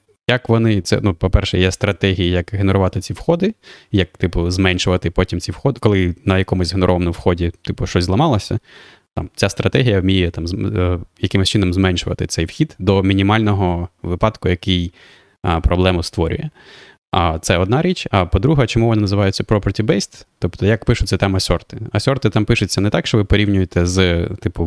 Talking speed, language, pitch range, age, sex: 165 wpm, Ukrainian, 90-105 Hz, 20-39, male